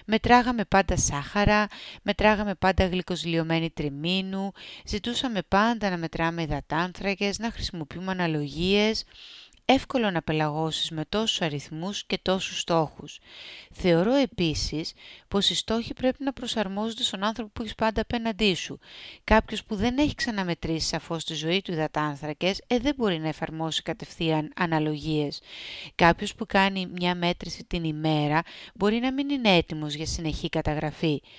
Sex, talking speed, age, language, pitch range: female, 135 wpm, 30-49, Greek, 160-215 Hz